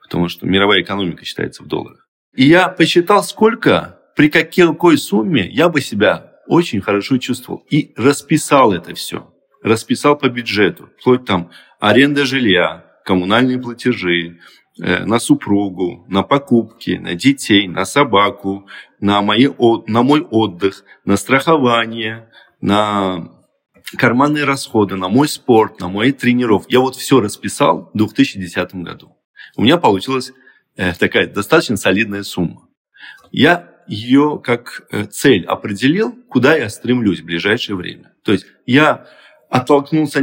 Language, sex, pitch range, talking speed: Russian, male, 100-145 Hz, 125 wpm